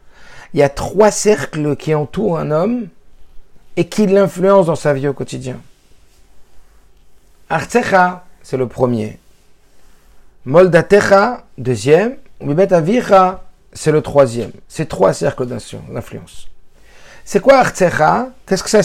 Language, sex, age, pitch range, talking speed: French, male, 50-69, 145-195 Hz, 120 wpm